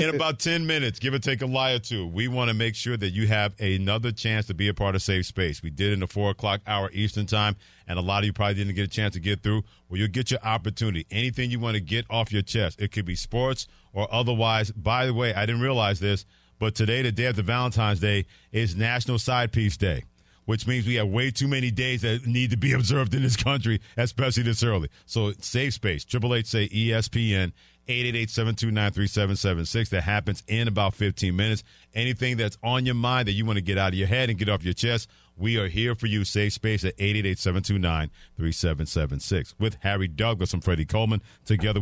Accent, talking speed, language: American, 240 wpm, English